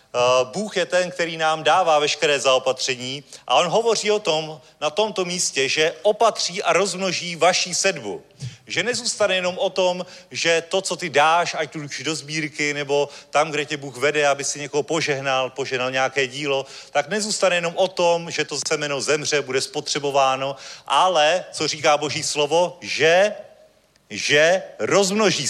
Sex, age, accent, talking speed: male, 40-59, native, 160 wpm